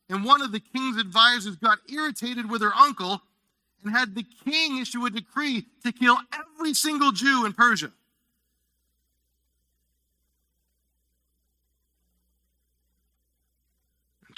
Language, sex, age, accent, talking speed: English, male, 40-59, American, 110 wpm